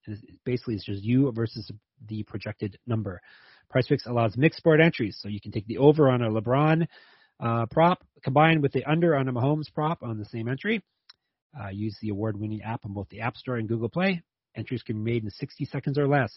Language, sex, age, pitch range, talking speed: English, male, 30-49, 115-145 Hz, 215 wpm